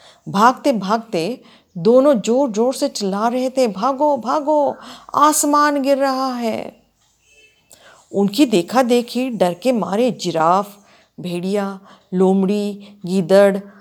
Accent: native